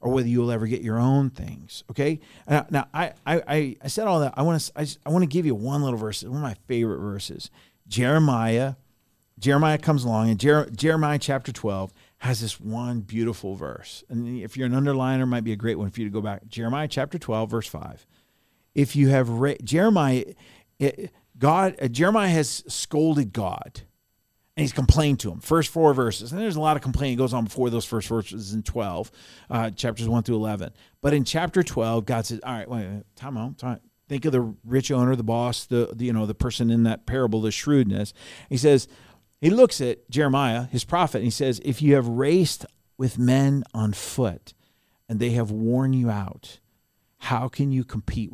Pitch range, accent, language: 110-140 Hz, American, English